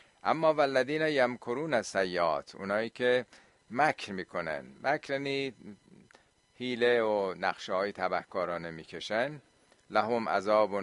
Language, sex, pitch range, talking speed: Persian, male, 105-125 Hz, 100 wpm